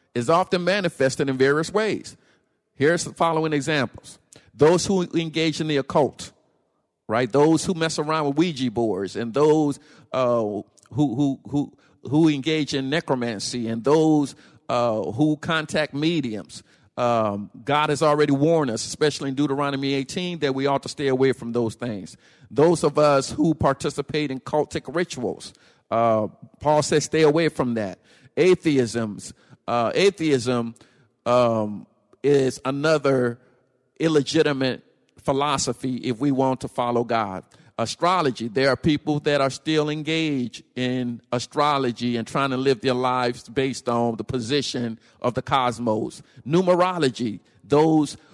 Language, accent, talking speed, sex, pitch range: English, American, 140 wpm, male, 120-150 Hz